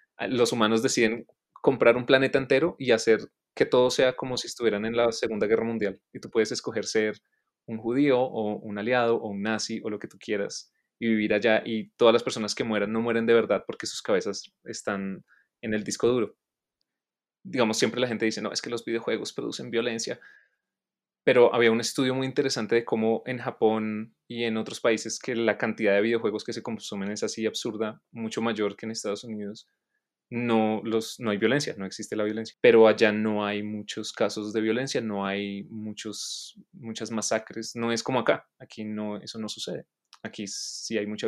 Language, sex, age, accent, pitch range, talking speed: Spanish, male, 20-39, Colombian, 110-120 Hz, 195 wpm